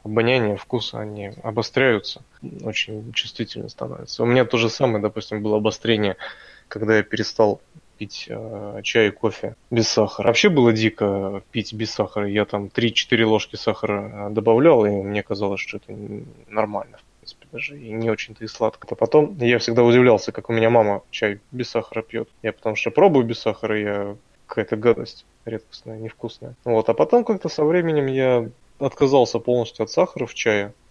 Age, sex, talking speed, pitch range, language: 20-39, male, 170 wpm, 110-125 Hz, Russian